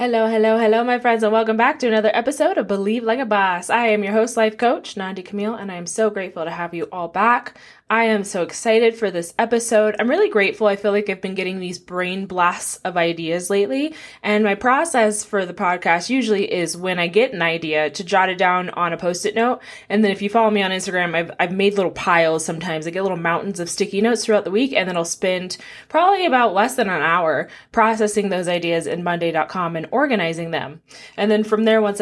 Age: 20-39